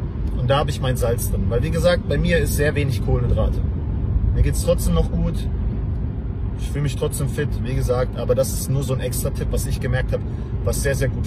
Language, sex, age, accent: English, male, 40-59, German